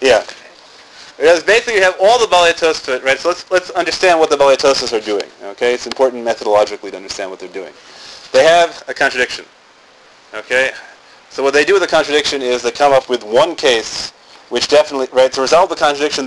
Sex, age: male, 30-49